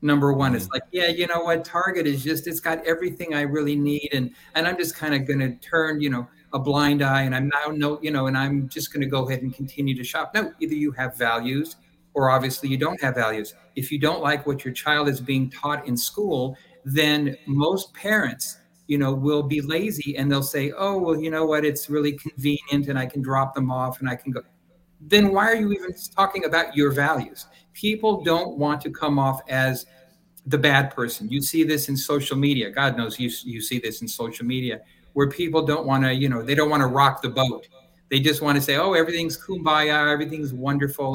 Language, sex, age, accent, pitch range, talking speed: English, male, 50-69, American, 130-155 Hz, 230 wpm